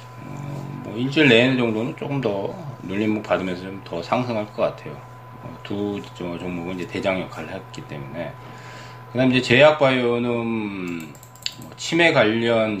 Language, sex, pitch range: Korean, male, 95-125 Hz